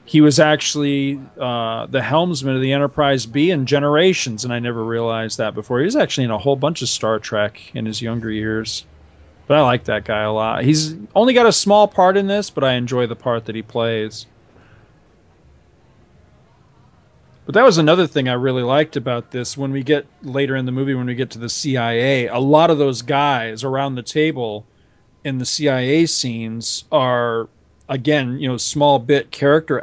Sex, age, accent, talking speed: male, 40-59, American, 195 wpm